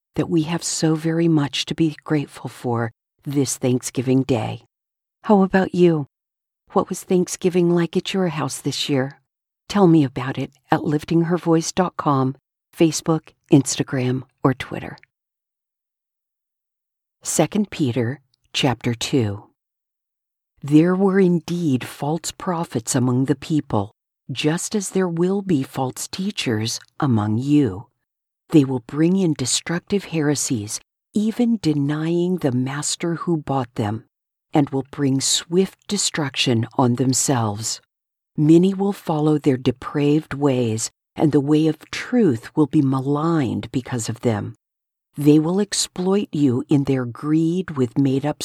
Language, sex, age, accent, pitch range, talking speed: English, female, 50-69, American, 130-165 Hz, 125 wpm